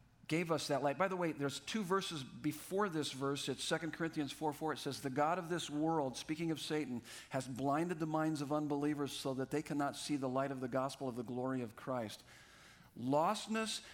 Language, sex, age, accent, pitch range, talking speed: English, male, 50-69, American, 135-165 Hz, 215 wpm